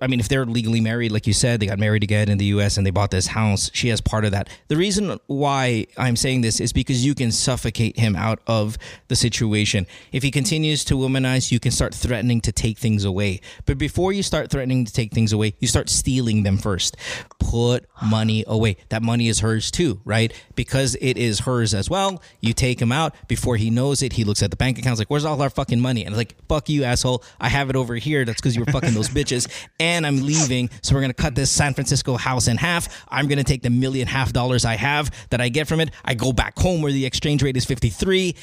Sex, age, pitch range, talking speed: male, 30-49, 110-135 Hz, 255 wpm